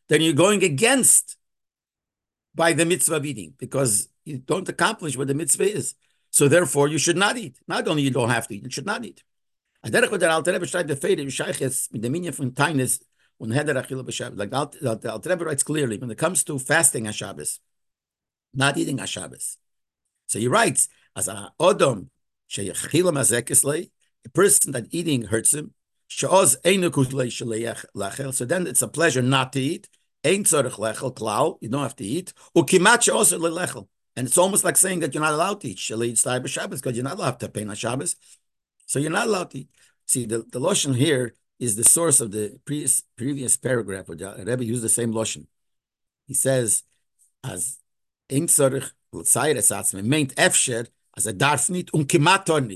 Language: English